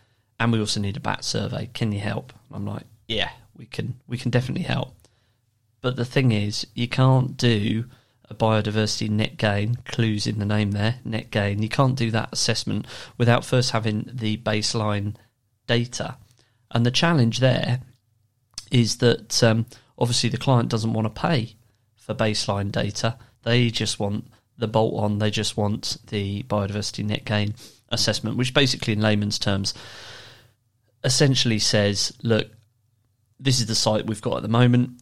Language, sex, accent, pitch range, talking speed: English, male, British, 105-120 Hz, 165 wpm